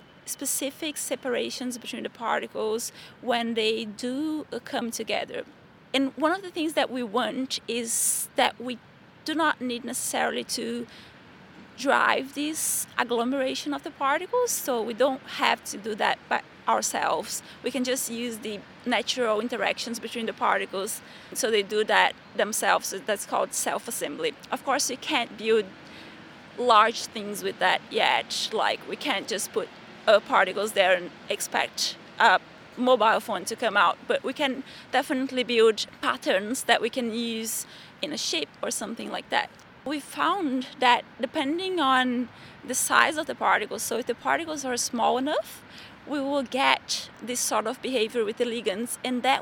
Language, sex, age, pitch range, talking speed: English, female, 20-39, 225-280 Hz, 160 wpm